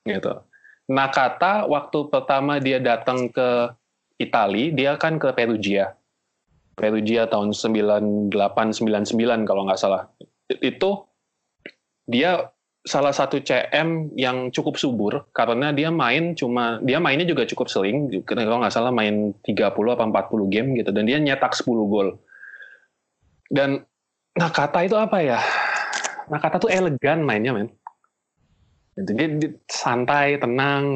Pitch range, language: 110-145 Hz, Indonesian